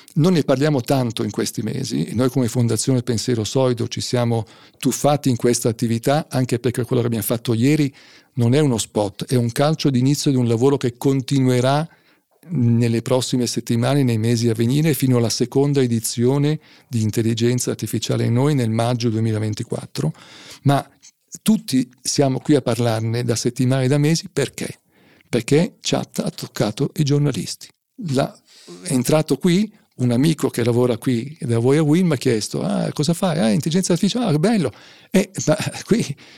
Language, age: Italian, 50-69